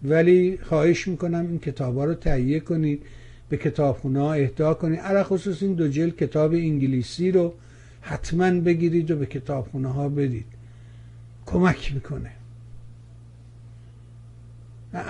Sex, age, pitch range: male, 60-79, 115-170 Hz